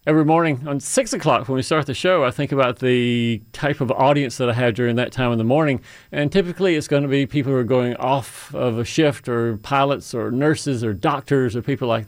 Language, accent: English, American